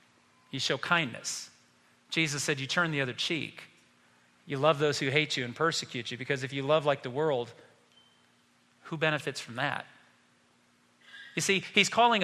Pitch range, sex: 125-195 Hz, male